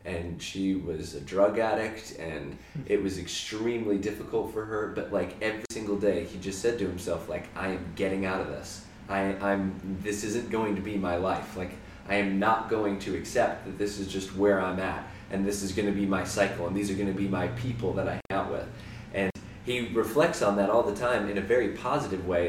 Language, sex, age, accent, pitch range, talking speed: English, male, 20-39, American, 95-105 Hz, 225 wpm